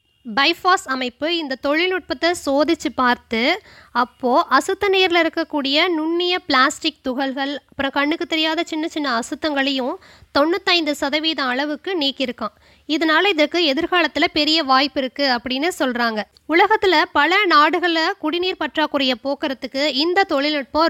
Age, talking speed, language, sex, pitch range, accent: 20-39, 105 wpm, Tamil, female, 275-335 Hz, native